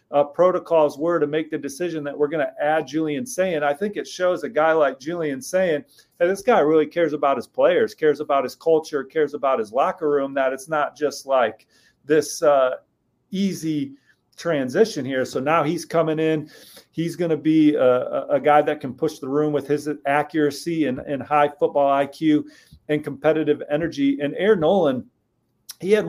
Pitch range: 145-165 Hz